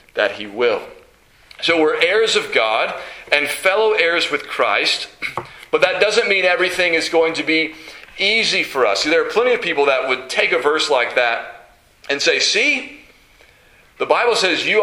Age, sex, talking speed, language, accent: 40-59, male, 180 wpm, English, American